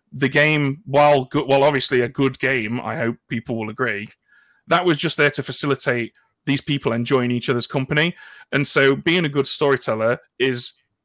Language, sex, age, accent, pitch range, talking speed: English, male, 30-49, British, 120-145 Hz, 175 wpm